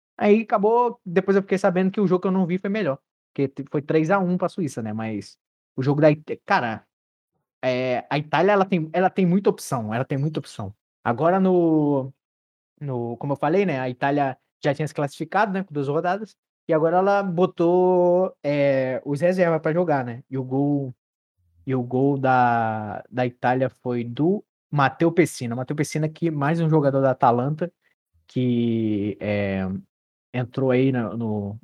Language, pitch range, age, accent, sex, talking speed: Portuguese, 130-180 Hz, 20-39, Brazilian, male, 185 wpm